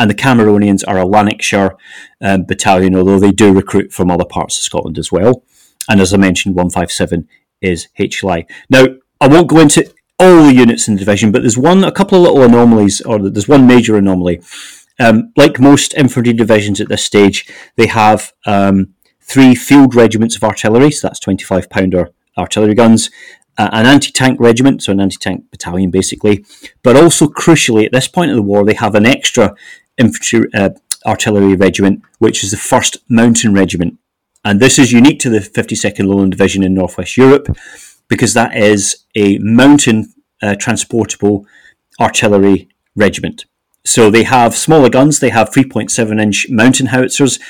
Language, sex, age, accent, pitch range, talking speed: English, male, 30-49, British, 100-125 Hz, 170 wpm